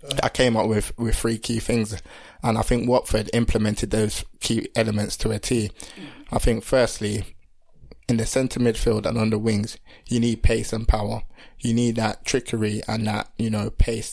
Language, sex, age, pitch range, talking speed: English, male, 20-39, 105-115 Hz, 185 wpm